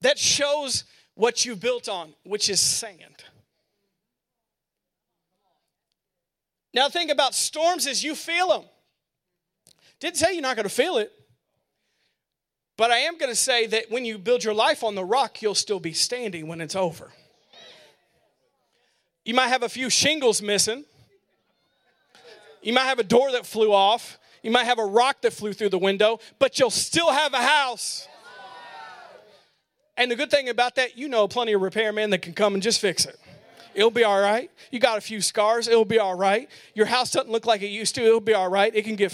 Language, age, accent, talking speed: English, 40-59, American, 190 wpm